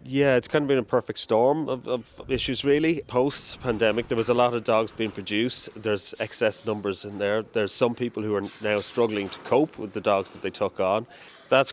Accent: Irish